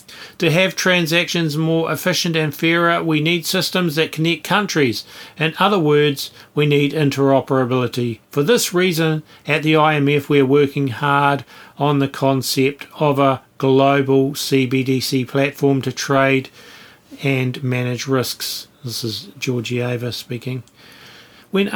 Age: 40-59